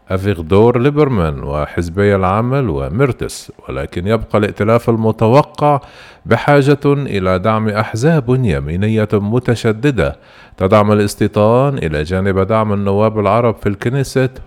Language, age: Arabic, 50-69